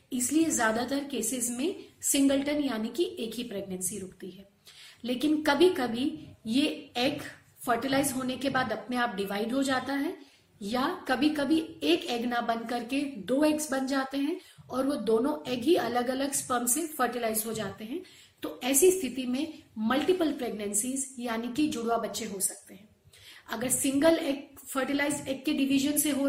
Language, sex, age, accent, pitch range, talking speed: Hindi, female, 40-59, native, 240-300 Hz, 170 wpm